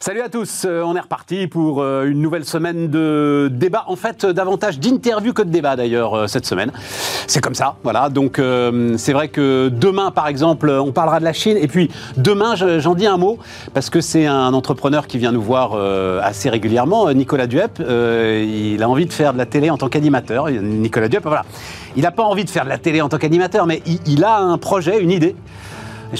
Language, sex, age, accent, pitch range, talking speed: French, male, 40-59, French, 125-175 Hz, 210 wpm